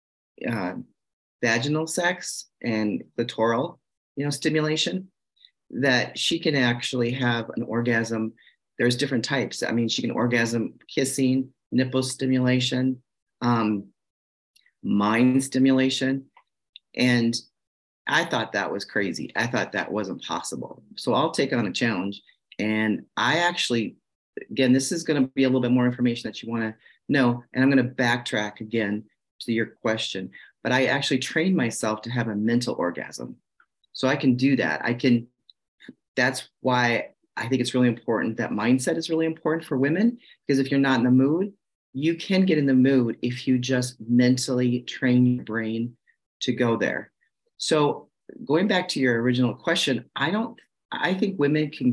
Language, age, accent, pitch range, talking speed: English, 40-59, American, 120-145 Hz, 165 wpm